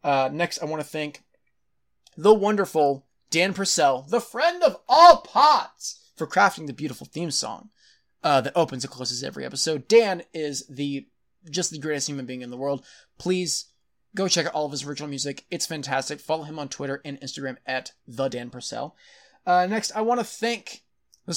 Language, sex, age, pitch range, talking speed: English, male, 20-39, 145-195 Hz, 190 wpm